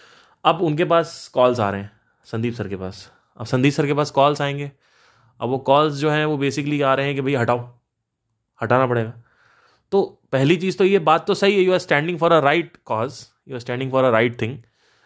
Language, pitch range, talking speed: Hindi, 115-150 Hz, 225 wpm